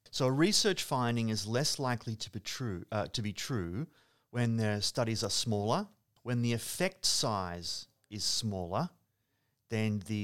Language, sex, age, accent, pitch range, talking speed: English, male, 40-59, Australian, 100-130 Hz, 140 wpm